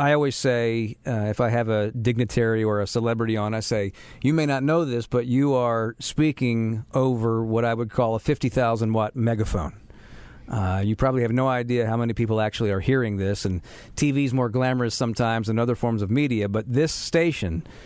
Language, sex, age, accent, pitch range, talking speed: English, male, 50-69, American, 110-135 Hz, 195 wpm